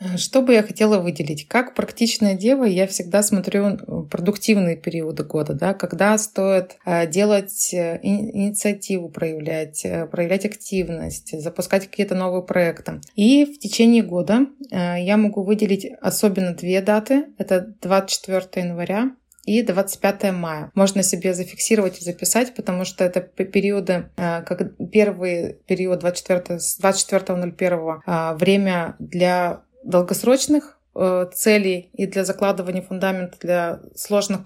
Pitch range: 180-210 Hz